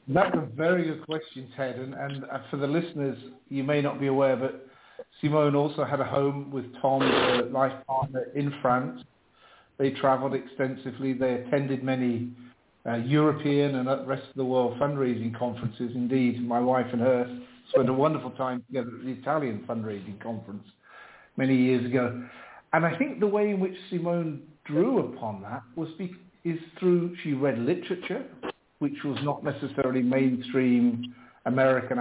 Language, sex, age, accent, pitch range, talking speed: English, male, 50-69, British, 125-165 Hz, 155 wpm